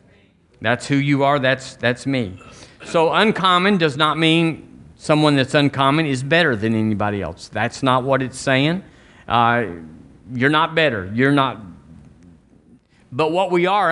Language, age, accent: English, 50-69, American